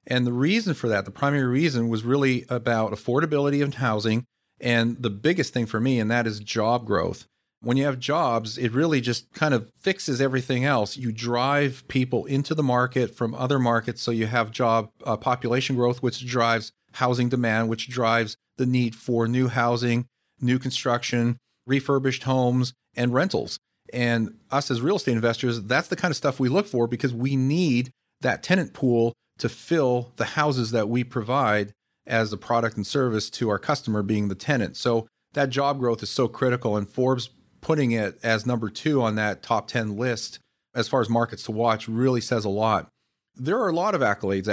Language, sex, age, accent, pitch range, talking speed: English, male, 40-59, American, 115-130 Hz, 195 wpm